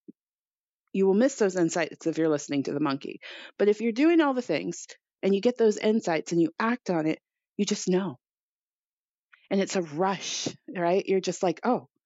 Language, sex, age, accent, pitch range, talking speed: English, female, 30-49, American, 165-225 Hz, 200 wpm